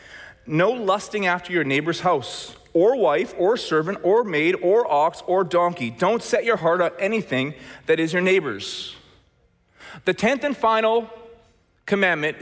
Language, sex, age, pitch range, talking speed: English, male, 30-49, 170-220 Hz, 150 wpm